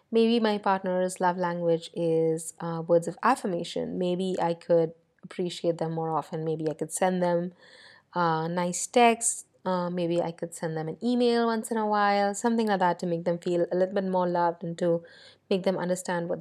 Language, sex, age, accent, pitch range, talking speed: English, female, 30-49, Indian, 175-215 Hz, 200 wpm